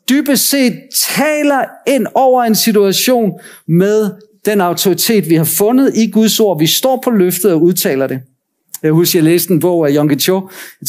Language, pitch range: Danish, 180-230 Hz